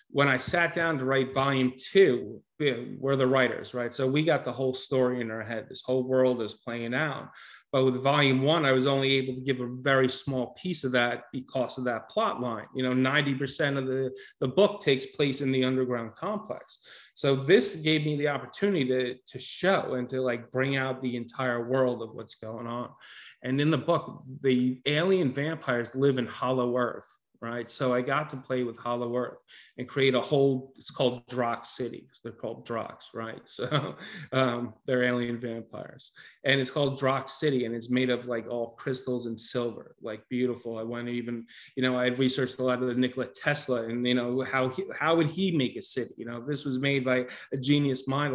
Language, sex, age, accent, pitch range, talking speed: English, male, 30-49, American, 125-145 Hz, 210 wpm